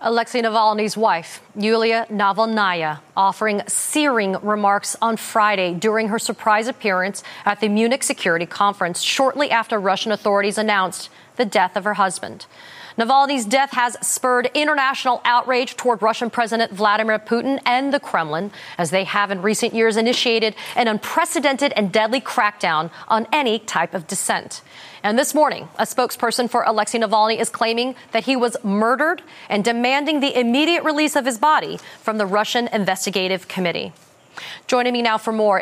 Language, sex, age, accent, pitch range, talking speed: English, female, 40-59, American, 200-245 Hz, 155 wpm